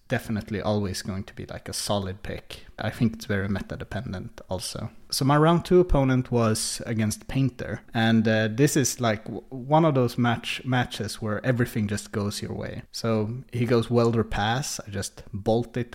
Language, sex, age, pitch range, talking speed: English, male, 30-49, 105-120 Hz, 190 wpm